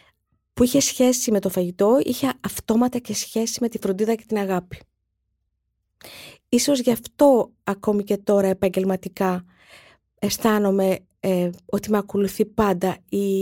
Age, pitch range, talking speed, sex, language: 20-39, 185-245 Hz, 135 wpm, female, Greek